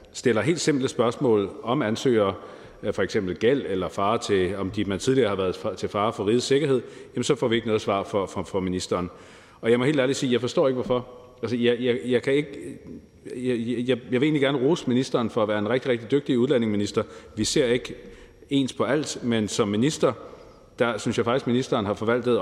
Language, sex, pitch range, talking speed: Danish, male, 105-130 Hz, 215 wpm